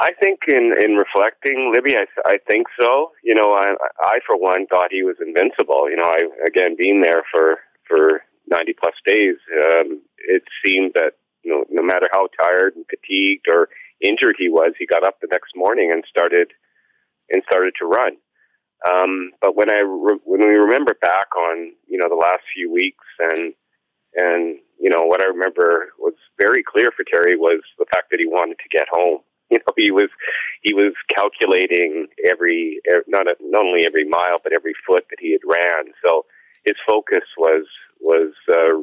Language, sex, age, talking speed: English, male, 30-49, 185 wpm